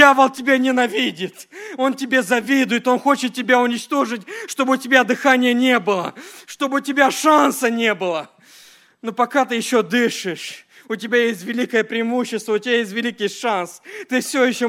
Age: 40-59